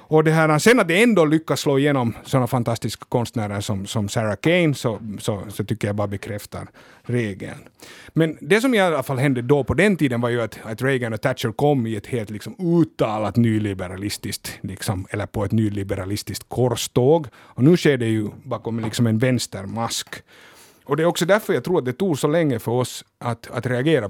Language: Swedish